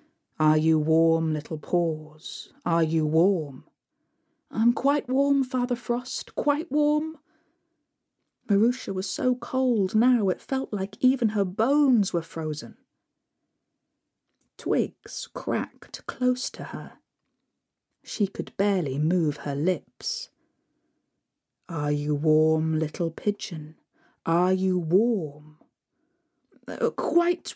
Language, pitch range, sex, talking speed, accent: English, 185-290 Hz, female, 105 wpm, British